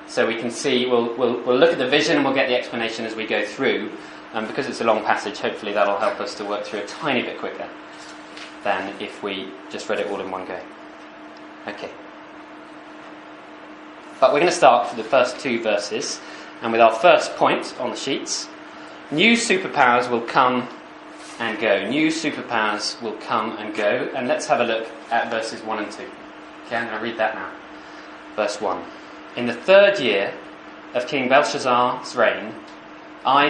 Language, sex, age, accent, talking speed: English, male, 20-39, British, 190 wpm